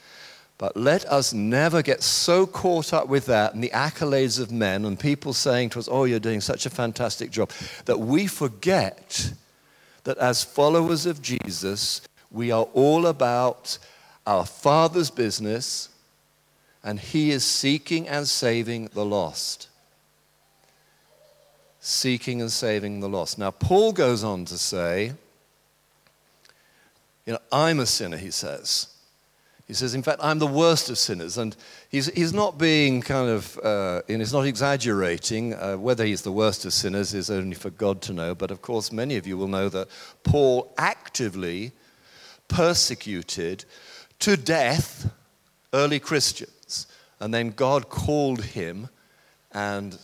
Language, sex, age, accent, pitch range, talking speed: English, male, 50-69, British, 105-140 Hz, 150 wpm